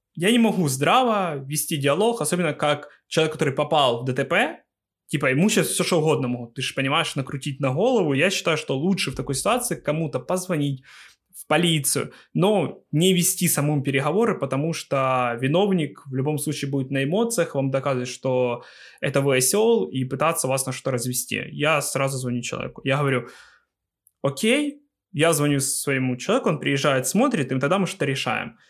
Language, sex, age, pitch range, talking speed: Ukrainian, male, 20-39, 130-175 Hz, 170 wpm